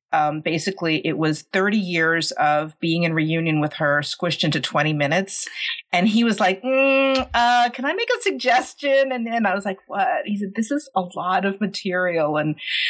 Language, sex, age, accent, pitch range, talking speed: English, female, 40-59, American, 155-215 Hz, 195 wpm